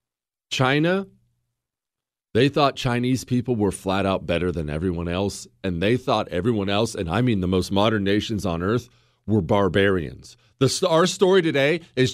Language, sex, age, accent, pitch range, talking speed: English, male, 40-59, American, 105-160 Hz, 160 wpm